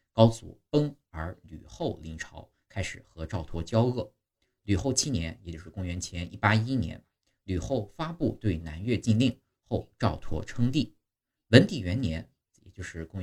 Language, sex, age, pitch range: Chinese, male, 50-69, 85-115 Hz